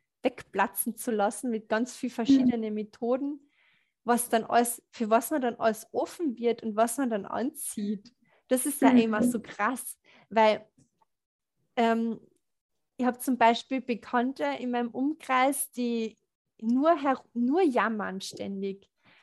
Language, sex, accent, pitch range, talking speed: German, female, German, 225-260 Hz, 140 wpm